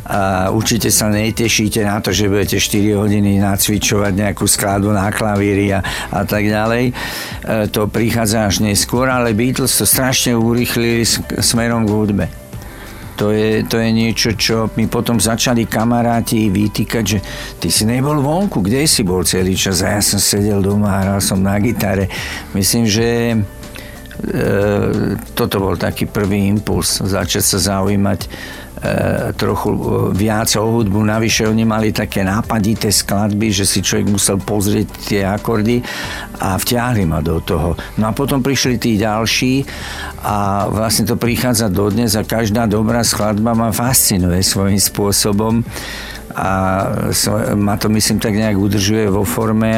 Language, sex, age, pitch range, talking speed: Czech, male, 60-79, 100-115 Hz, 150 wpm